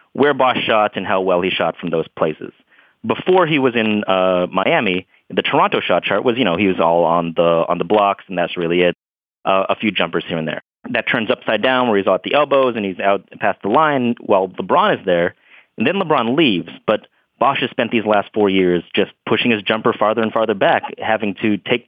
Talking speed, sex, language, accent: 235 wpm, male, English, American